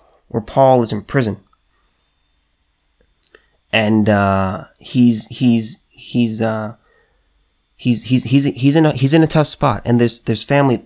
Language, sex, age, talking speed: English, male, 20-39, 145 wpm